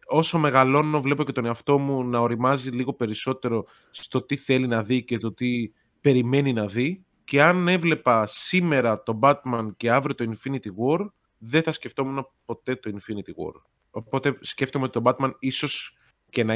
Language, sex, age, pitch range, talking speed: Greek, male, 20-39, 110-145 Hz, 175 wpm